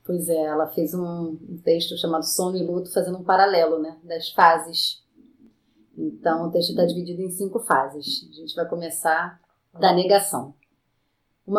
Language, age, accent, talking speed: Portuguese, 30-49, Brazilian, 160 wpm